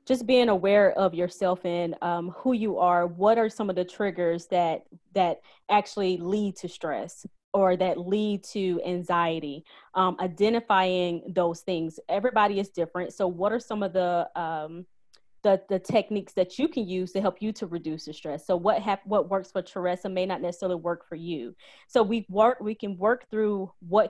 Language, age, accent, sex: English, 20-39, American, female